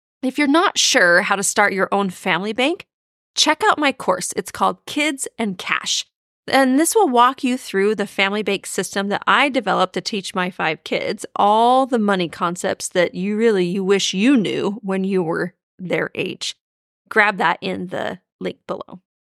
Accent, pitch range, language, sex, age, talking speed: American, 195-255 Hz, English, female, 30-49, 185 wpm